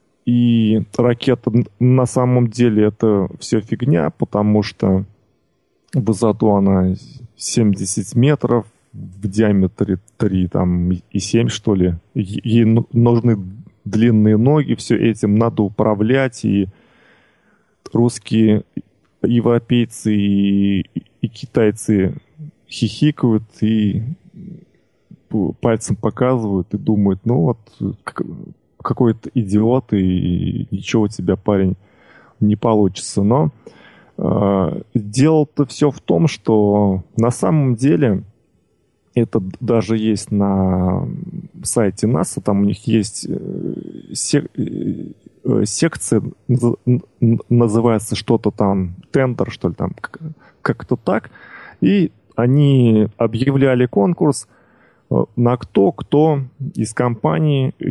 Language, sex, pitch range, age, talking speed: Russian, male, 100-125 Hz, 20-39, 95 wpm